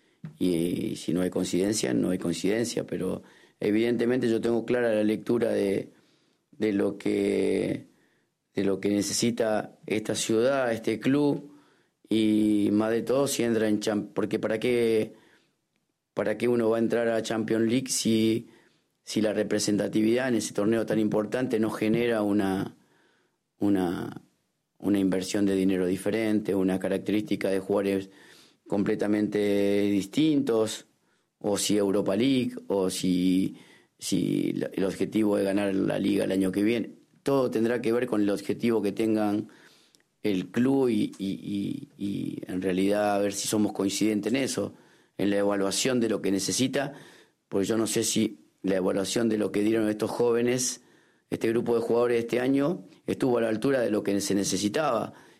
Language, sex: French, male